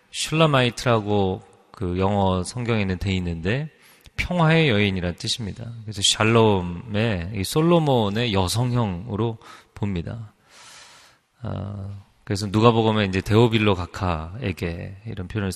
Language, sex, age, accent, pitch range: Korean, male, 30-49, native, 95-120 Hz